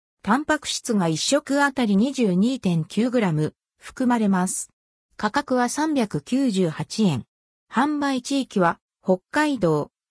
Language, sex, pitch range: Japanese, female, 175-265 Hz